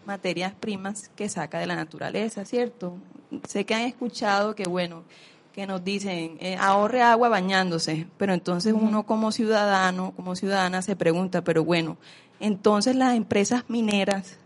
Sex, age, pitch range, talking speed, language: female, 20-39, 180-220 Hz, 150 wpm, Spanish